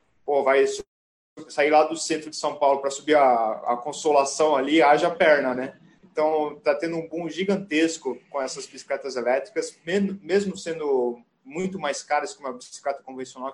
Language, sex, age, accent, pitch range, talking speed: Portuguese, male, 20-39, Brazilian, 130-170 Hz, 170 wpm